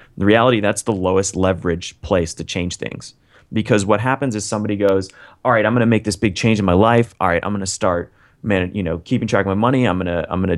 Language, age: English, 30-49